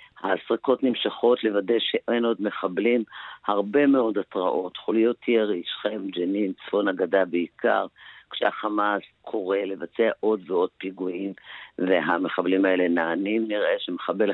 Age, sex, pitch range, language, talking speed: 50-69, female, 90-110 Hz, Hebrew, 115 wpm